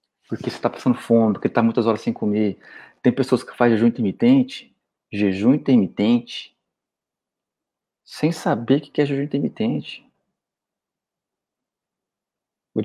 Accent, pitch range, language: Brazilian, 115-140 Hz, Portuguese